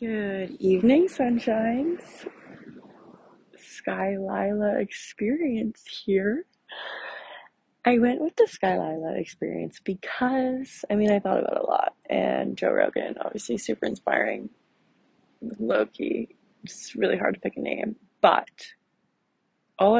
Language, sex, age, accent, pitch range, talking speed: English, female, 20-39, American, 190-230 Hz, 115 wpm